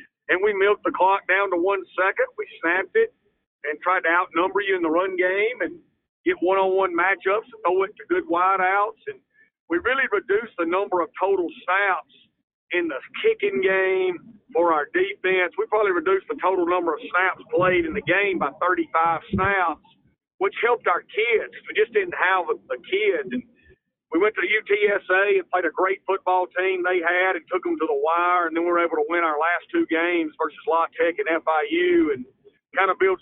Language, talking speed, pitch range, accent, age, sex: English, 205 wpm, 170-260 Hz, American, 50-69, male